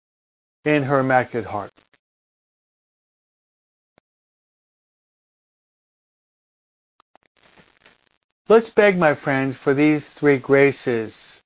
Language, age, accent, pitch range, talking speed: English, 40-59, American, 120-160 Hz, 65 wpm